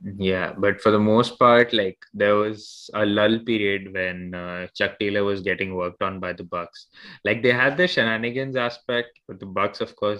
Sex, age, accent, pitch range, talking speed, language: male, 20-39, Indian, 95-110 Hz, 200 wpm, English